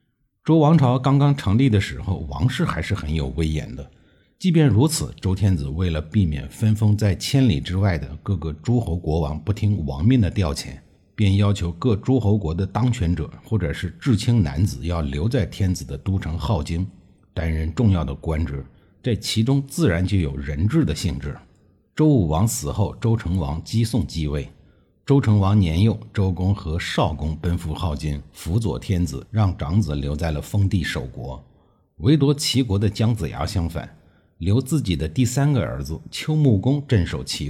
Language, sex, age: Chinese, male, 60-79